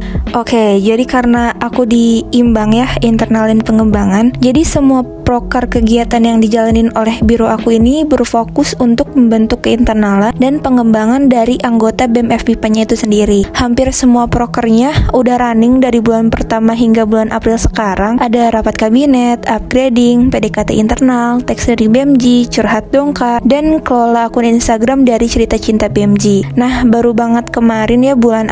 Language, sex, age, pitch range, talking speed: Indonesian, female, 20-39, 220-245 Hz, 145 wpm